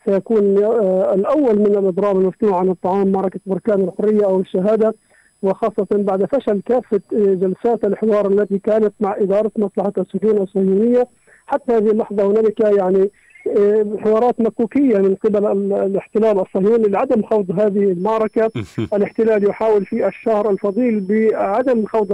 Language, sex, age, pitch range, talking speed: Arabic, male, 50-69, 200-225 Hz, 125 wpm